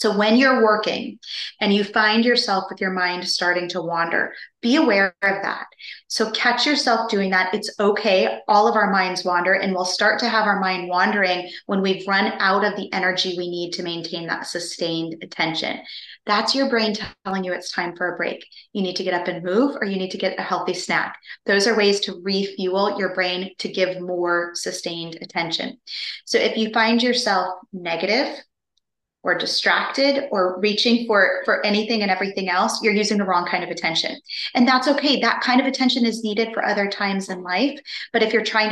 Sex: female